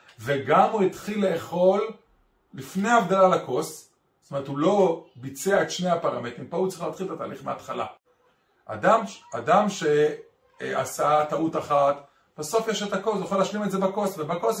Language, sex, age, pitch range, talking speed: Hebrew, male, 30-49, 140-185 Hz, 155 wpm